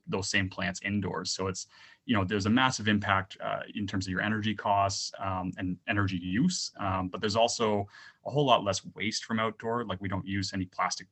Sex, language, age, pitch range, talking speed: male, English, 20-39, 95-105 Hz, 215 wpm